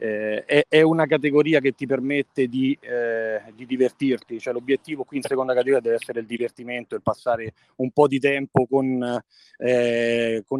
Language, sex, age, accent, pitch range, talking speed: Italian, male, 30-49, native, 120-155 Hz, 175 wpm